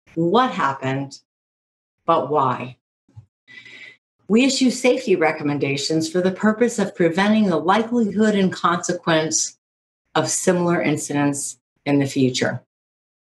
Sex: female